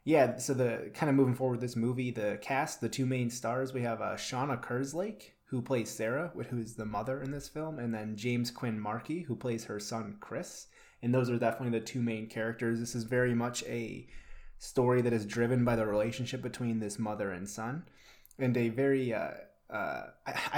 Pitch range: 115-130 Hz